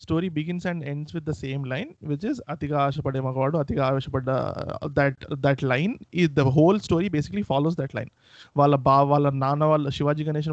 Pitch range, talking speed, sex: 140-165 Hz, 170 wpm, male